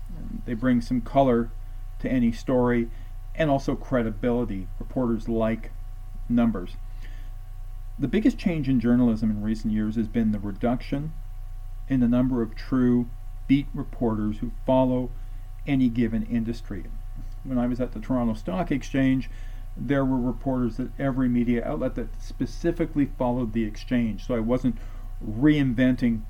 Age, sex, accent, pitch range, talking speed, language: 40-59, male, American, 105-125 Hz, 140 wpm, English